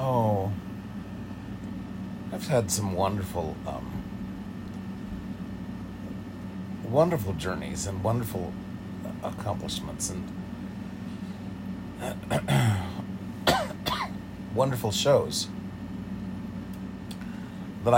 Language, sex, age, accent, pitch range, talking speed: English, male, 50-69, American, 95-115 Hz, 50 wpm